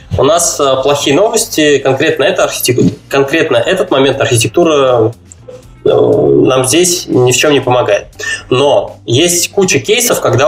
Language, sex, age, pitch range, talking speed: Russian, male, 20-39, 125-170 Hz, 115 wpm